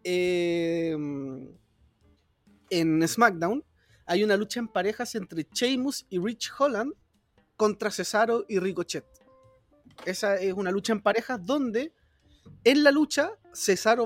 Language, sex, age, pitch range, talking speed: Spanish, male, 30-49, 160-210 Hz, 120 wpm